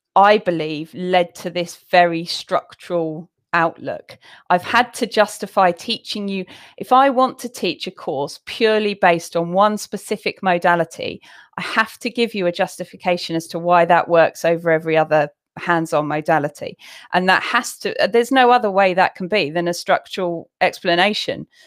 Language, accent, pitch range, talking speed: English, British, 175-210 Hz, 165 wpm